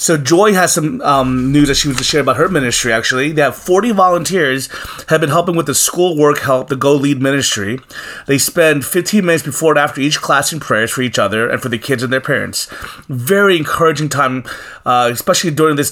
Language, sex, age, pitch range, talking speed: English, male, 30-49, 125-155 Hz, 220 wpm